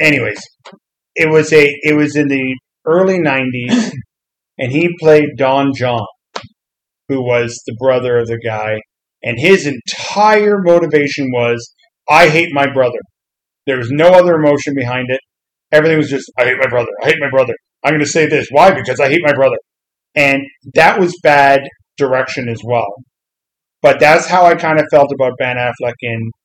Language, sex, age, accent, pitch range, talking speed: English, male, 40-59, American, 125-150 Hz, 175 wpm